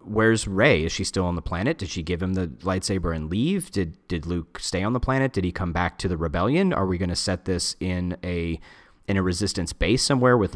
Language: English